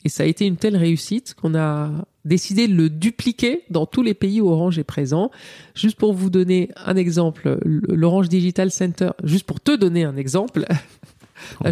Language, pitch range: French, 155-205 Hz